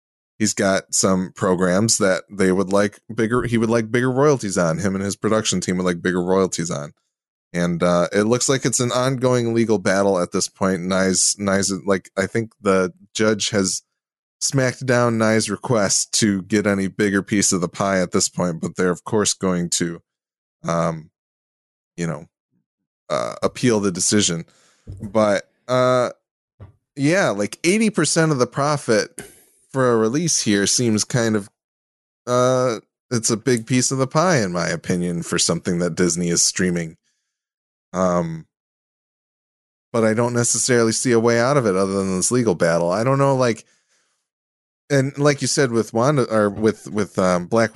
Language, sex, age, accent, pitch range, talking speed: English, male, 20-39, American, 90-120 Hz, 170 wpm